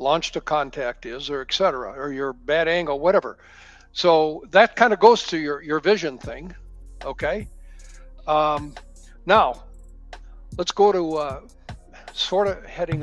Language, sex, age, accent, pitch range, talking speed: English, male, 60-79, American, 125-170 Hz, 145 wpm